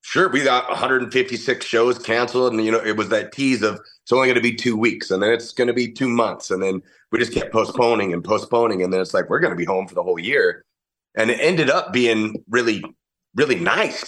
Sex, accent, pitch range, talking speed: male, American, 100-130 Hz, 245 wpm